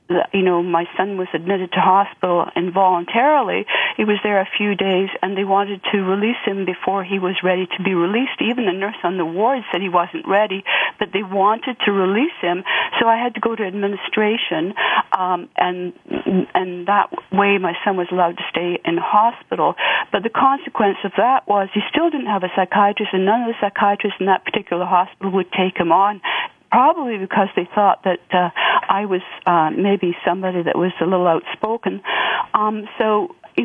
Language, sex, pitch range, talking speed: English, female, 185-215 Hz, 195 wpm